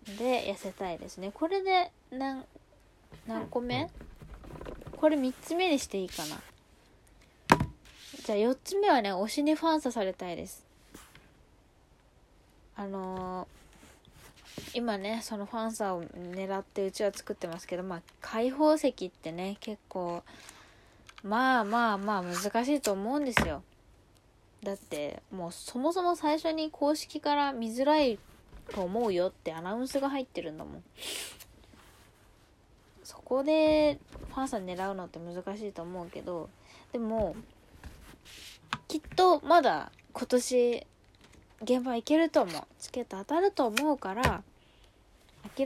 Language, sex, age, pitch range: Japanese, female, 20-39, 190-280 Hz